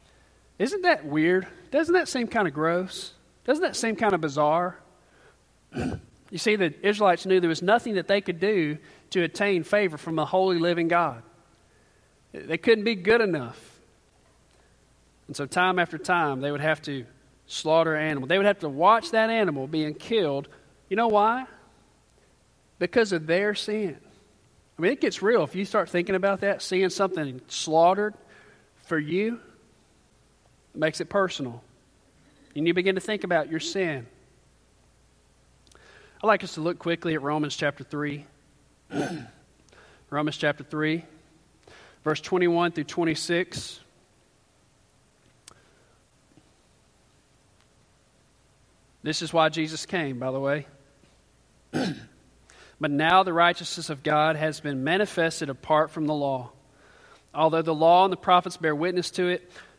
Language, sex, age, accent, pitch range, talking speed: English, male, 40-59, American, 150-190 Hz, 145 wpm